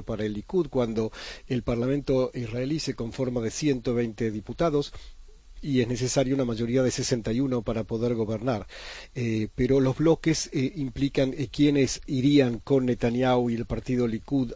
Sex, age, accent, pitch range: male, 40-59, Argentinian, 115-135 Hz